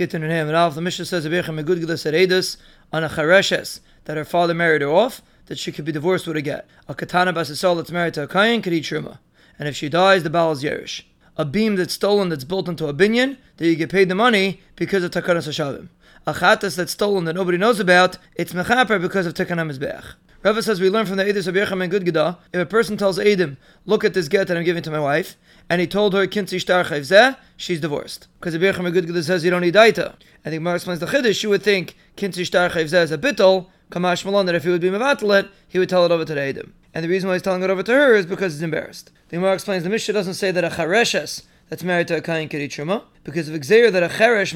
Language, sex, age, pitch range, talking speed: English, male, 20-39, 170-195 Hz, 225 wpm